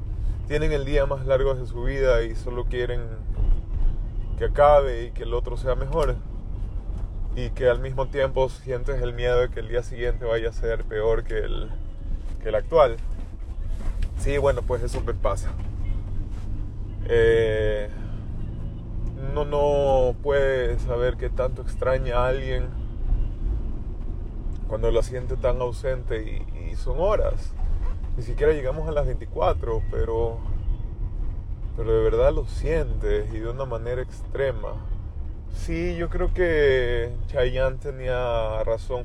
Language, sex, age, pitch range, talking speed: English, male, 30-49, 95-125 Hz, 140 wpm